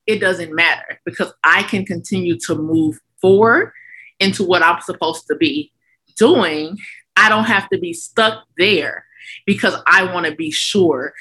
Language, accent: English, American